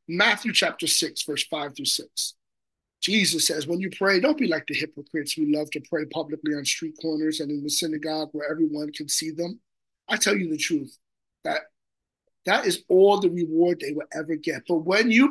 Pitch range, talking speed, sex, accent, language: 160-205 Hz, 205 wpm, male, American, English